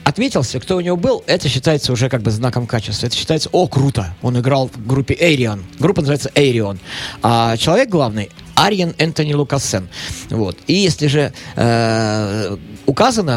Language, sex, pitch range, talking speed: Russian, male, 115-155 Hz, 160 wpm